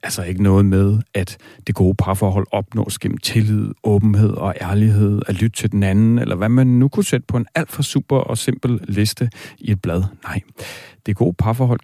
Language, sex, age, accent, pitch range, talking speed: Danish, male, 40-59, native, 95-120 Hz, 205 wpm